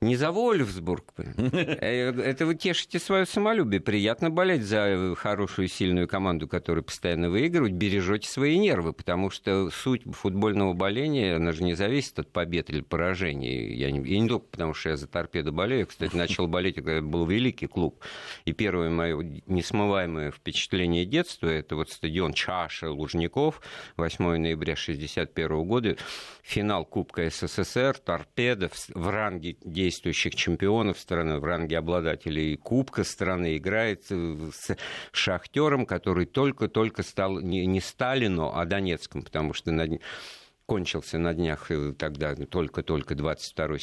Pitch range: 80-105 Hz